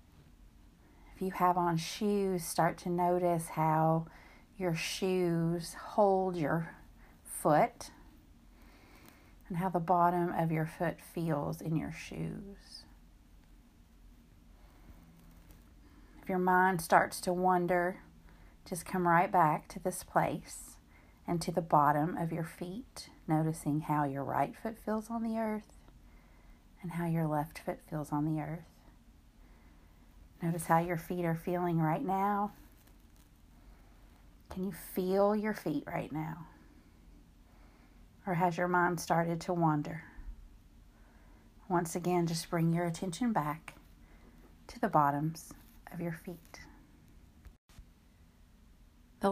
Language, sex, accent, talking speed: English, female, American, 120 wpm